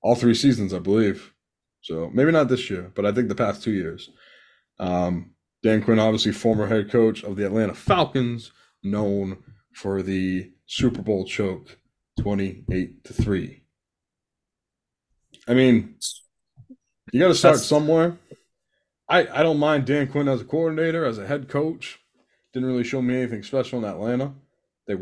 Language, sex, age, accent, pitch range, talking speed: English, male, 20-39, American, 100-130 Hz, 155 wpm